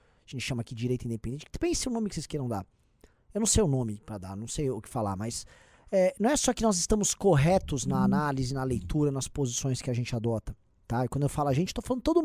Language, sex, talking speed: Portuguese, male, 270 wpm